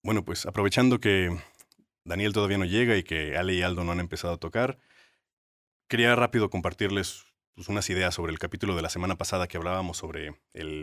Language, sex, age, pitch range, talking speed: Spanish, male, 30-49, 95-135 Hz, 195 wpm